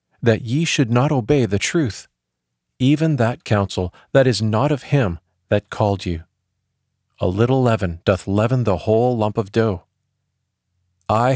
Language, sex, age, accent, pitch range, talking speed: English, male, 40-59, American, 95-130 Hz, 155 wpm